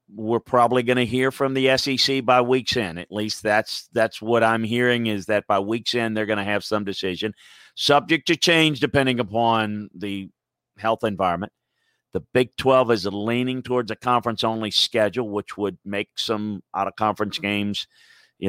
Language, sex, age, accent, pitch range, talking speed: English, male, 50-69, American, 105-125 Hz, 185 wpm